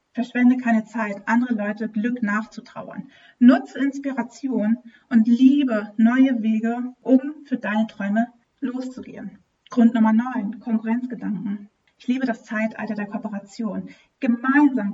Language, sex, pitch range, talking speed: German, female, 220-255 Hz, 115 wpm